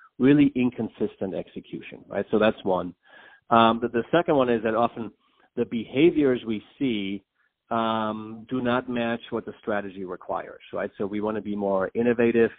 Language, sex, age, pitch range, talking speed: English, male, 40-59, 100-120 Hz, 165 wpm